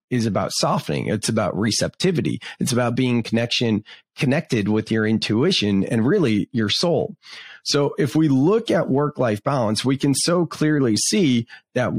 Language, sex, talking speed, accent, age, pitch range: English, male, 155 wpm, American, 30-49, 110-150 Hz